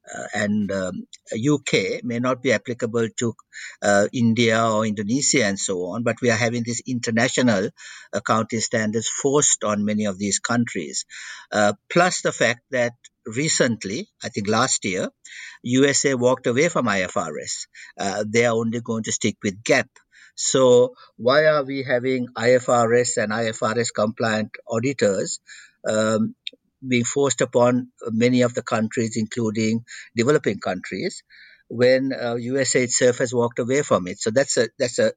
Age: 60-79